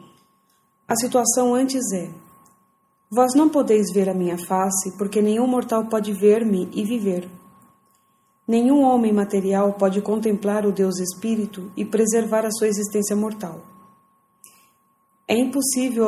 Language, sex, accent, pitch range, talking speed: English, female, Brazilian, 195-220 Hz, 125 wpm